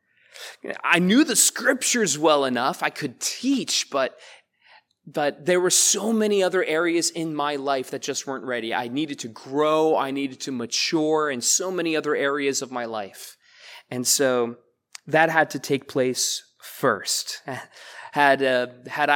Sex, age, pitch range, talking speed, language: male, 20-39, 135-190 Hz, 160 wpm, English